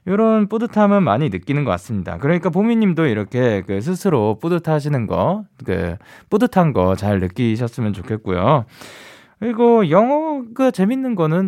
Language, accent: Korean, native